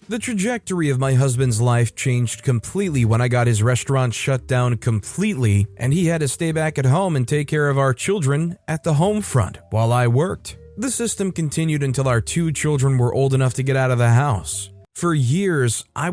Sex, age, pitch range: male, 30-49, 120-160 Hz